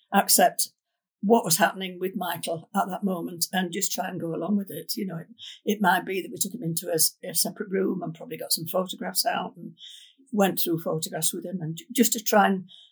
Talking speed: 230 wpm